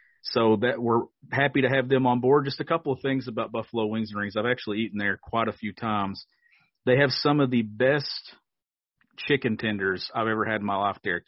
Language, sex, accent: English, male, American